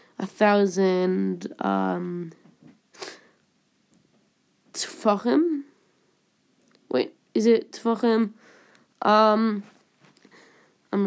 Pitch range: 190-225 Hz